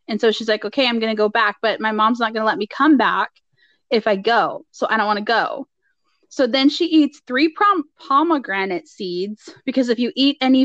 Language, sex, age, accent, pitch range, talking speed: English, female, 20-39, American, 225-285 Hz, 230 wpm